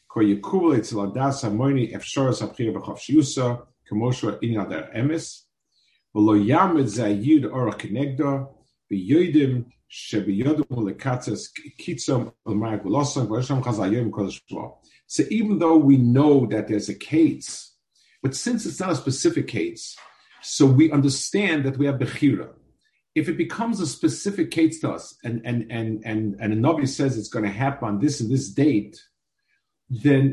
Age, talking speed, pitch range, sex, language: 50-69, 90 wpm, 115-150 Hz, male, English